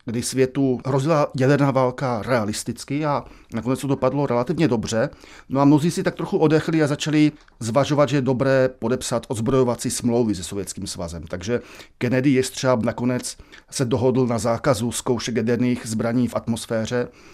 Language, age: Czech, 40-59